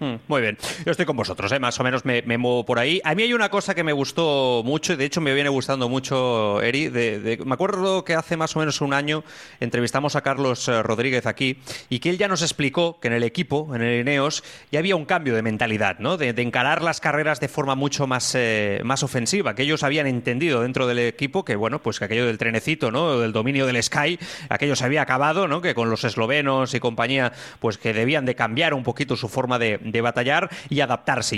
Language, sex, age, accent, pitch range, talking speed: Spanish, male, 30-49, Spanish, 120-155 Hz, 235 wpm